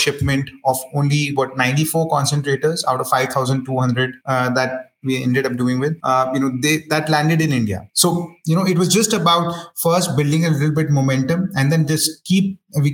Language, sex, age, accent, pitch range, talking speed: English, male, 30-49, Indian, 130-155 Hz, 195 wpm